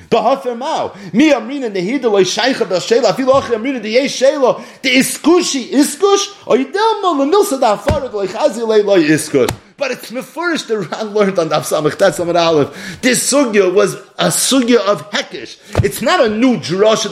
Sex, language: male, English